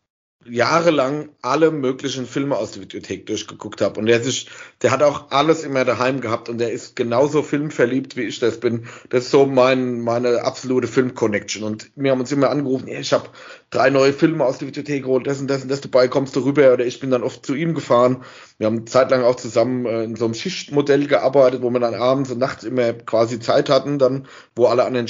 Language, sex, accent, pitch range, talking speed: German, male, German, 115-135 Hz, 220 wpm